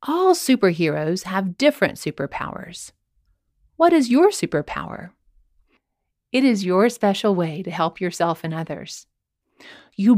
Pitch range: 165-265 Hz